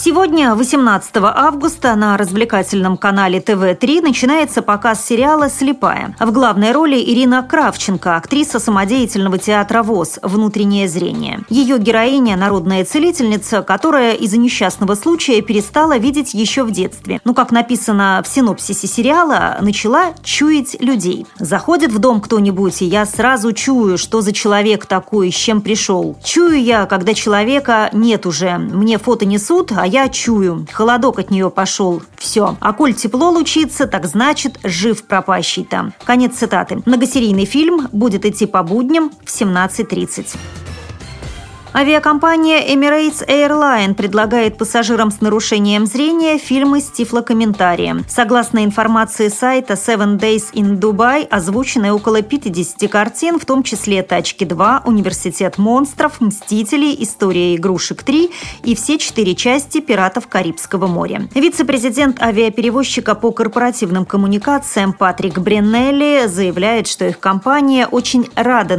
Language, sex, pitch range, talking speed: Russian, female, 200-260 Hz, 125 wpm